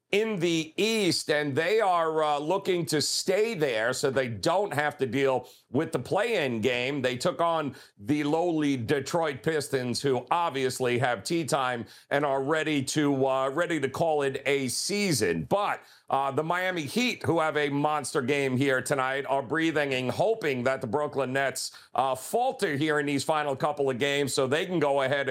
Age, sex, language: 40-59, male, English